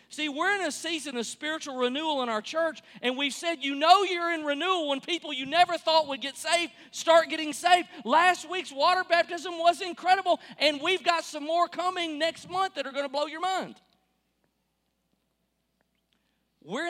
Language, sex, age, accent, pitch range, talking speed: English, male, 40-59, American, 275-345 Hz, 185 wpm